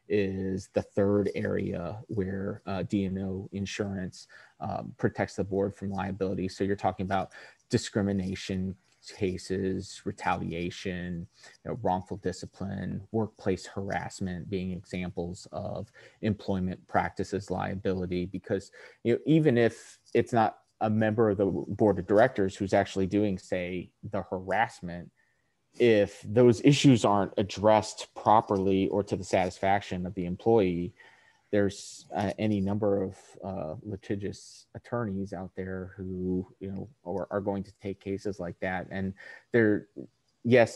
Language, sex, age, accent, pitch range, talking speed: English, male, 30-49, American, 95-105 Hz, 135 wpm